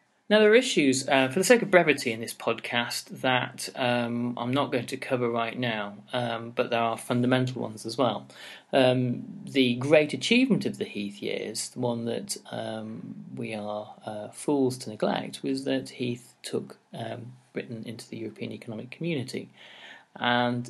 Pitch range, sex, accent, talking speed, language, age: 110-130 Hz, male, British, 175 wpm, English, 30-49